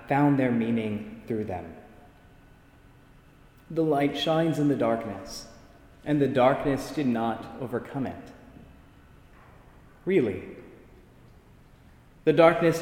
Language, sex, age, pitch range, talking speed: English, male, 20-39, 135-180 Hz, 100 wpm